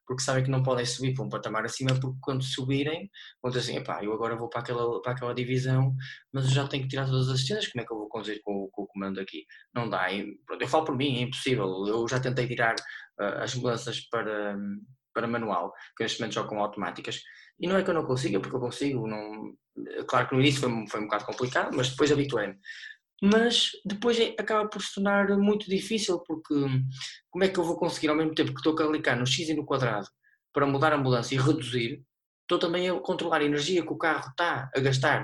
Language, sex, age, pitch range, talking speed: Portuguese, male, 20-39, 125-165 Hz, 235 wpm